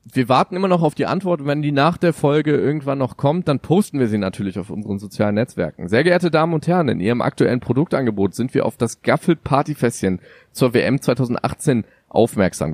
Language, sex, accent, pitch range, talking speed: German, male, German, 100-145 Hz, 205 wpm